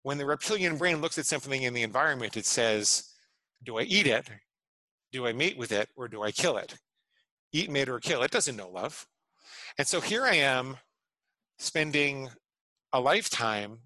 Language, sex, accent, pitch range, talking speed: English, male, American, 110-145 Hz, 180 wpm